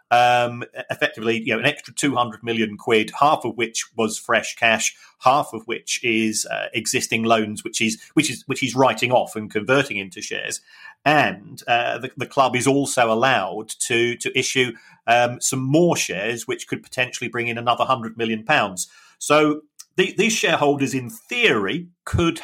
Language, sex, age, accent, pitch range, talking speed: English, male, 40-59, British, 115-140 Hz, 175 wpm